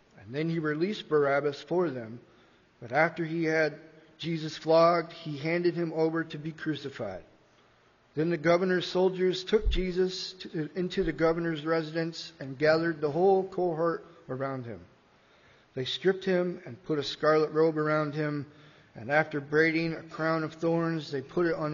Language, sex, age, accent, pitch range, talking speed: English, male, 40-59, American, 140-165 Hz, 155 wpm